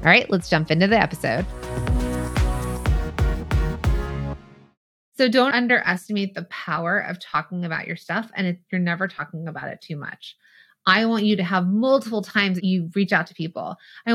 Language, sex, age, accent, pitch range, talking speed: English, female, 20-39, American, 175-220 Hz, 170 wpm